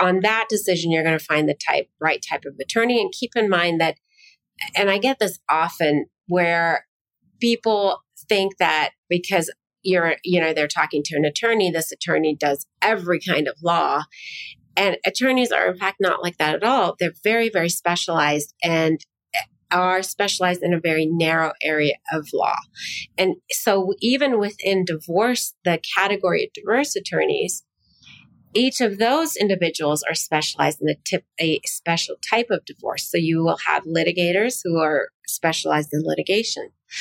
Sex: female